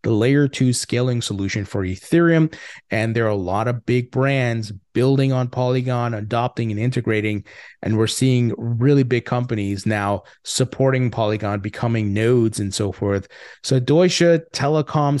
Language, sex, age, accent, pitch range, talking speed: English, male, 30-49, American, 110-140 Hz, 150 wpm